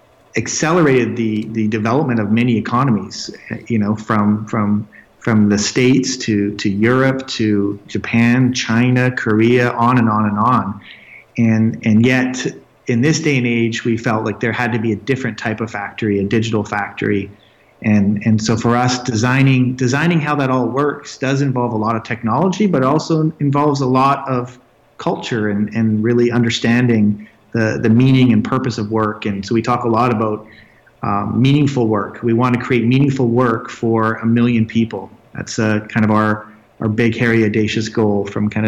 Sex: male